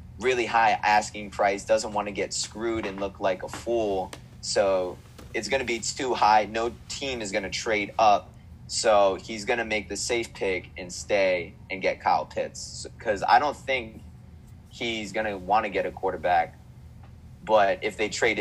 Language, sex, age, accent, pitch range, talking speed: English, male, 20-39, American, 100-120 Hz, 190 wpm